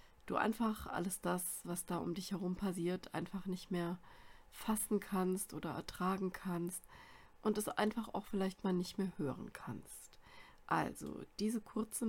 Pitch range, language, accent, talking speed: 175-210 Hz, German, German, 155 wpm